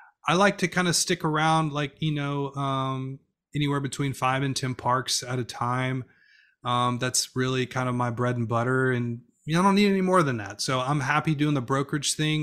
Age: 30-49